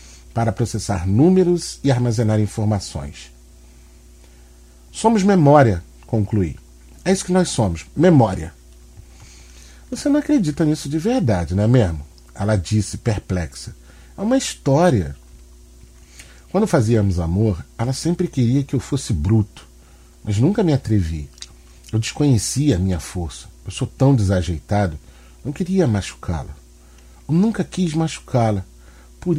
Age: 40-59